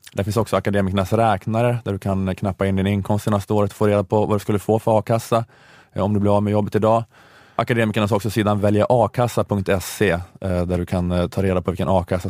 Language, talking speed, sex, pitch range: Swedish, 215 wpm, male, 95-115 Hz